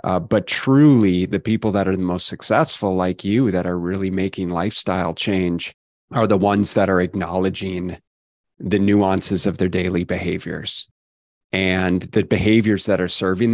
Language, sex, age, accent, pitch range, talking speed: English, male, 30-49, American, 90-105 Hz, 160 wpm